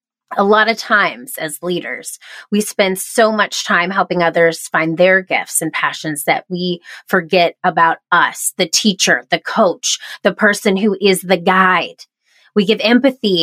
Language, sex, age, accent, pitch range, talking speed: English, female, 30-49, American, 185-245 Hz, 160 wpm